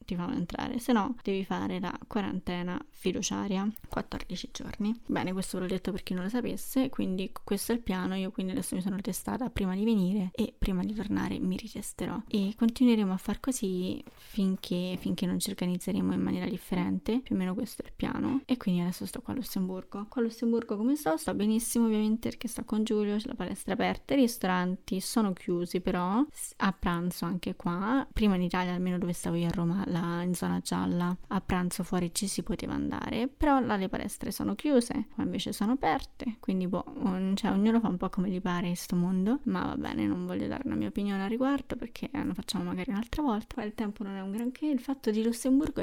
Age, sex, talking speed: 20-39, female, 215 wpm